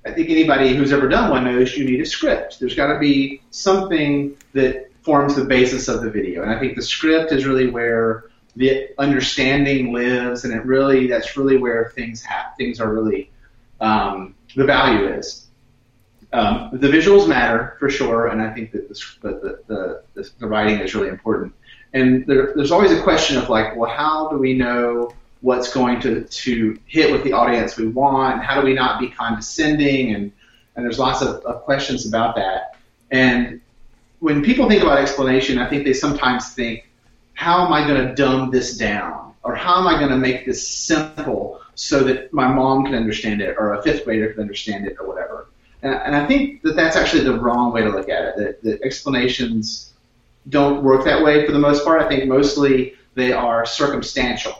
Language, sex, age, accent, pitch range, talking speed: English, male, 30-49, American, 120-140 Hz, 200 wpm